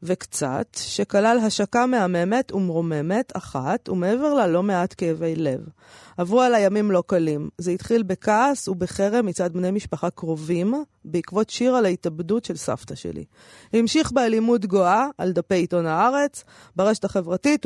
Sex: female